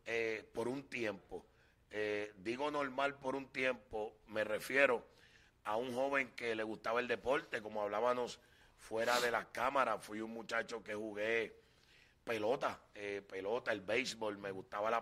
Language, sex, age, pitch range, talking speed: Spanish, male, 30-49, 110-130 Hz, 155 wpm